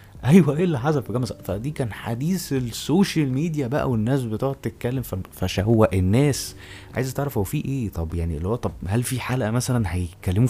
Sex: male